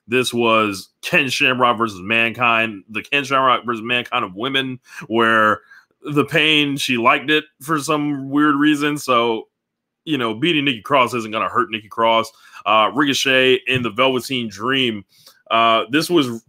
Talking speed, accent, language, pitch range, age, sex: 160 wpm, American, English, 115-150 Hz, 20-39, male